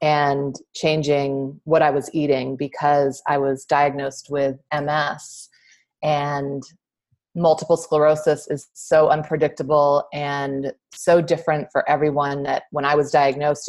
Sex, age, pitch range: female, 30-49, 140-155 Hz